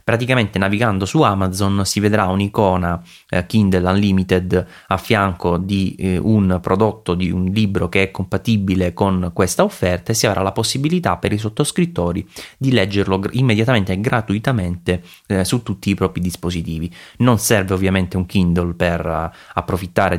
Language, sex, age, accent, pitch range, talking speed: Italian, male, 20-39, native, 90-115 Hz, 145 wpm